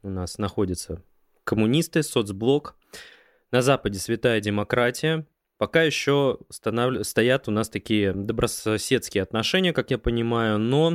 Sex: male